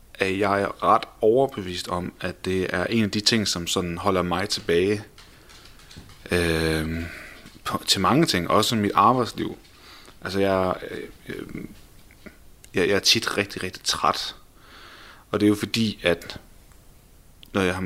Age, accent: 30-49, native